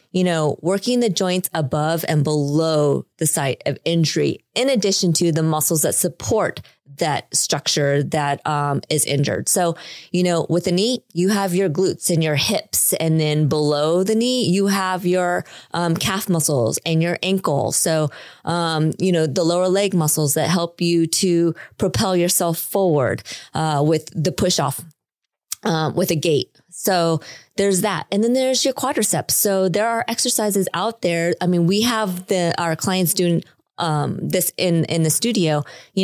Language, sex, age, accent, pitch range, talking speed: English, female, 20-39, American, 160-195 Hz, 175 wpm